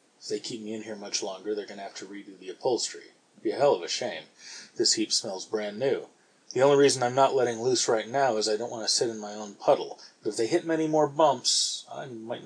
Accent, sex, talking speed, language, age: American, male, 270 wpm, English, 30-49